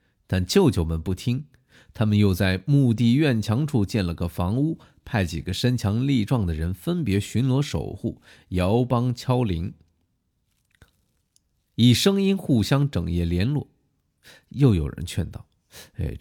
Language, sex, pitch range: Chinese, male, 90-130 Hz